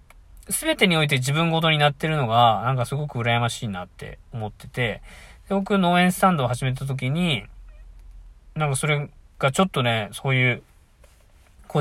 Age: 20-39